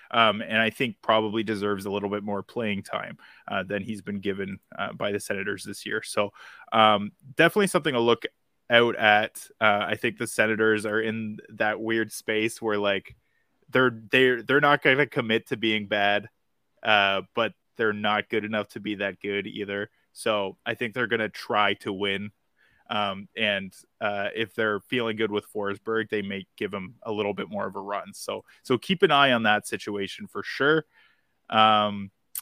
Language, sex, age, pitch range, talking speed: English, male, 20-39, 105-125 Hz, 190 wpm